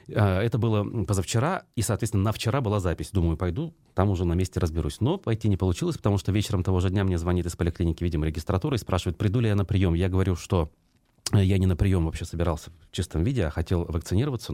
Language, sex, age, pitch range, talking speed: Russian, male, 30-49, 90-110 Hz, 225 wpm